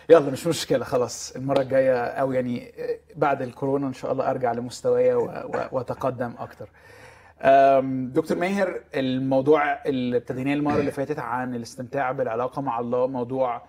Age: 20-39